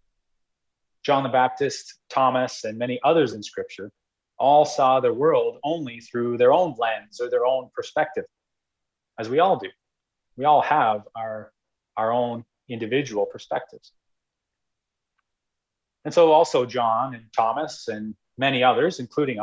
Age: 30-49